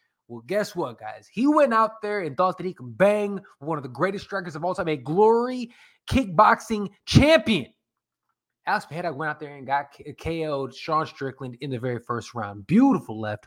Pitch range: 145-190 Hz